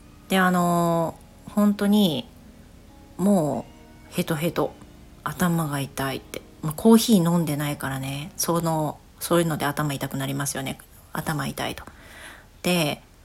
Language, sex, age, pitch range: Japanese, female, 40-59, 145-190 Hz